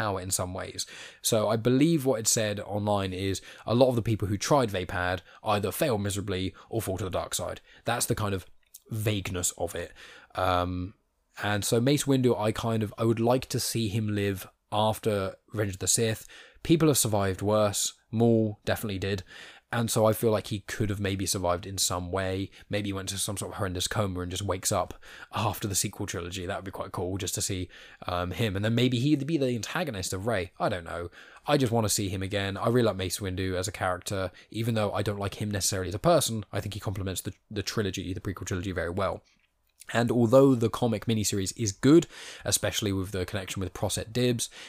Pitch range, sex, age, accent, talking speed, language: 95-115 Hz, male, 10-29, British, 220 wpm, English